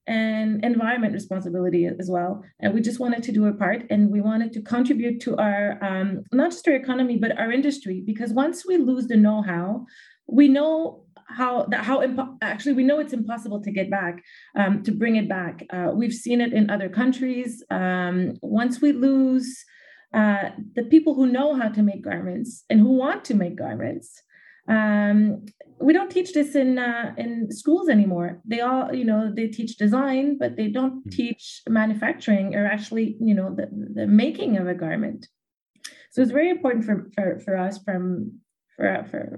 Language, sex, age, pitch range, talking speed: English, female, 30-49, 200-255 Hz, 185 wpm